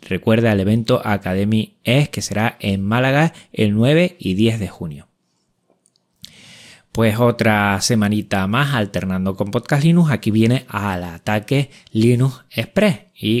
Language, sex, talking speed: Spanish, male, 135 wpm